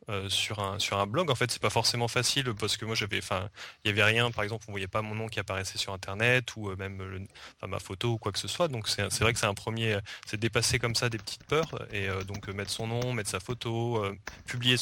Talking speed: 275 wpm